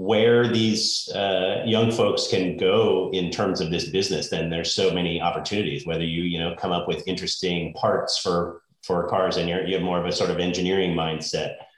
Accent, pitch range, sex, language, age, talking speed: American, 90-115 Hz, male, English, 30-49, 200 wpm